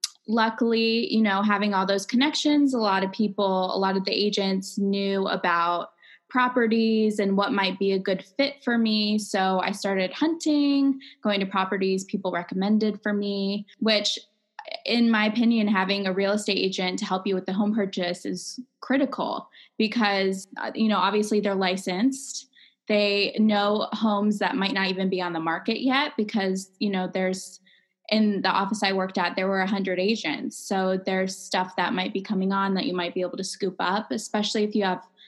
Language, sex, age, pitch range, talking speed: English, female, 20-39, 190-220 Hz, 185 wpm